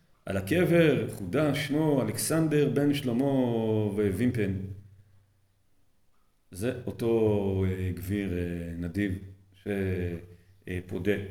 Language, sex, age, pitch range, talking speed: Hebrew, male, 40-59, 95-140 Hz, 70 wpm